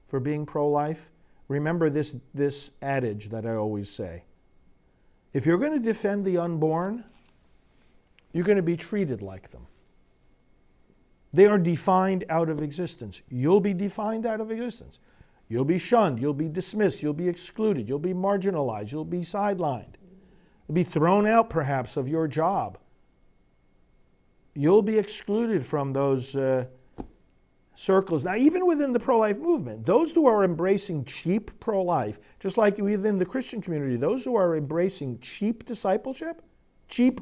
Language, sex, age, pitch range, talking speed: English, male, 50-69, 145-215 Hz, 150 wpm